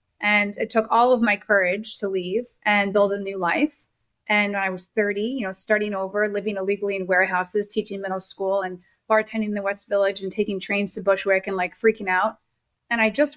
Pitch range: 195-225 Hz